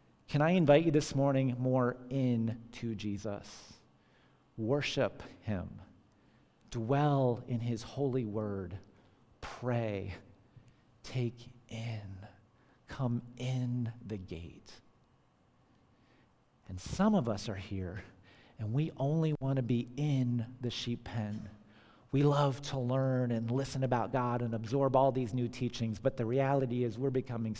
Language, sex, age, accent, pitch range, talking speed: English, male, 40-59, American, 110-135 Hz, 130 wpm